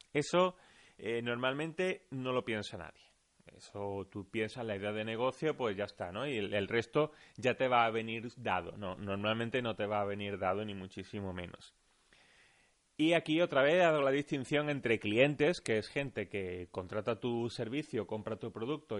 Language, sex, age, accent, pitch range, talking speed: Spanish, male, 30-49, Spanish, 110-145 Hz, 185 wpm